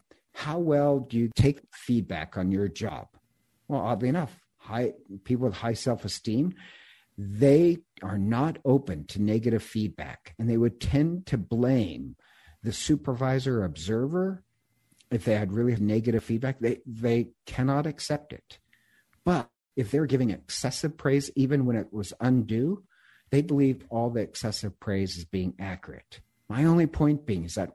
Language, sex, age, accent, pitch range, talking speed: English, male, 60-79, American, 105-145 Hz, 150 wpm